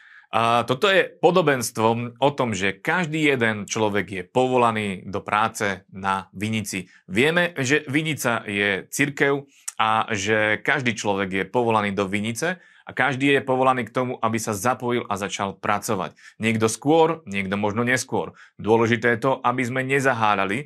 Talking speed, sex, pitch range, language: 150 wpm, male, 110-130 Hz, Slovak